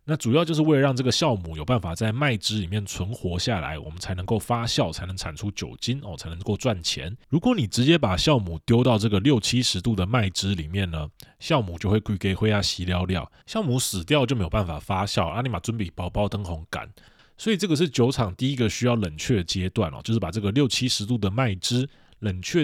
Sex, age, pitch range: male, 20-39, 95-130 Hz